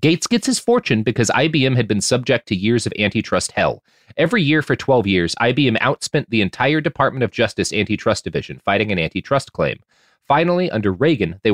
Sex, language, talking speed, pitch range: male, English, 185 wpm, 110-155 Hz